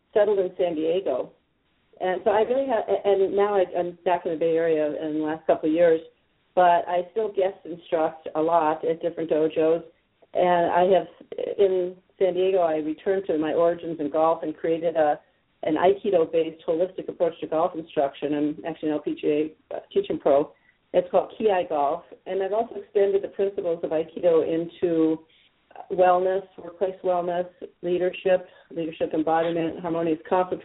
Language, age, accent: English, 40-59, American